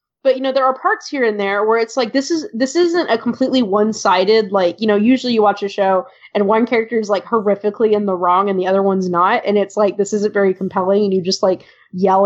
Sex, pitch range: female, 200-265 Hz